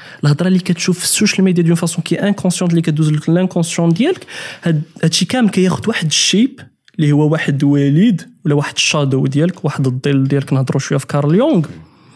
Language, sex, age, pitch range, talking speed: Arabic, male, 20-39, 145-190 Hz, 175 wpm